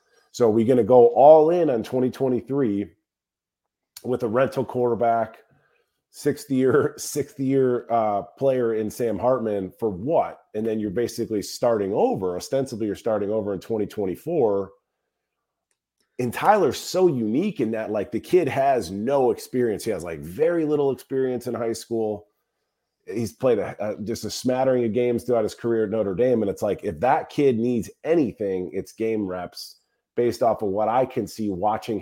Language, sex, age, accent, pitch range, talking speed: English, male, 30-49, American, 105-130 Hz, 170 wpm